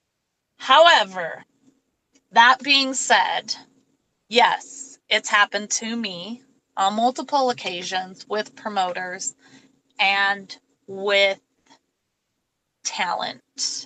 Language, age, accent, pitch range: English, 20-39, American, 185-235 Hz